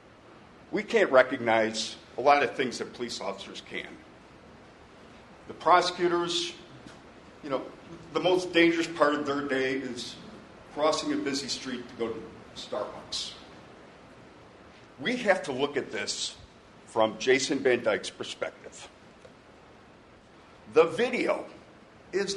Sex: male